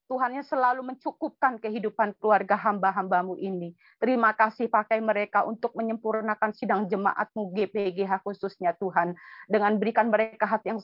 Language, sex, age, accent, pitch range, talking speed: Indonesian, female, 30-49, native, 210-240 Hz, 125 wpm